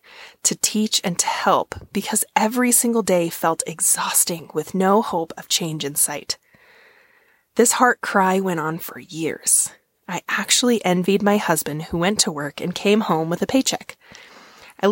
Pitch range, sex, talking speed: 160-215 Hz, female, 165 wpm